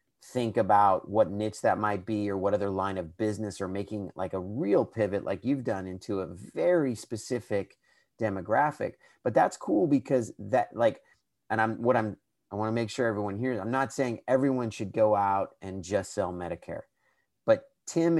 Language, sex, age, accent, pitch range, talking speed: English, male, 30-49, American, 105-135 Hz, 190 wpm